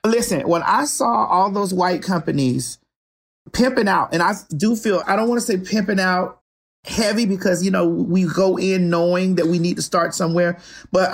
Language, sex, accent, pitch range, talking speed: English, male, American, 180-225 Hz, 195 wpm